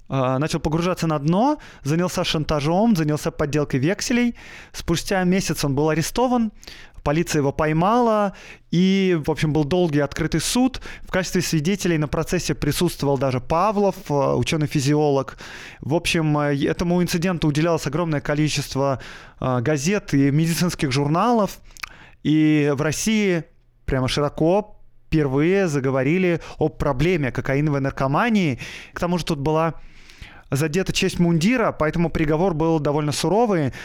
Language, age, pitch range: Russian, 20-39, 140-175 Hz